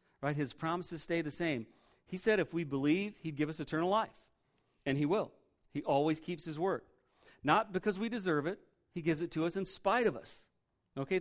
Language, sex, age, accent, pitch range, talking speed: English, male, 40-59, American, 130-170 Hz, 210 wpm